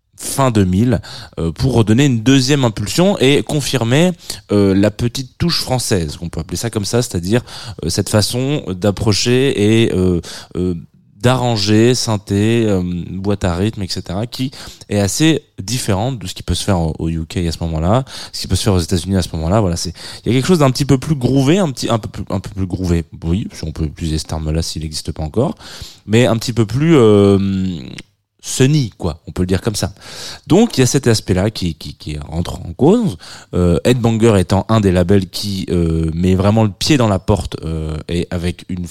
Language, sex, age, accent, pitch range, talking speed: French, male, 20-39, French, 85-120 Hz, 215 wpm